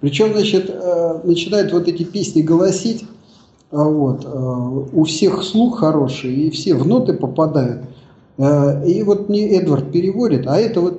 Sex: male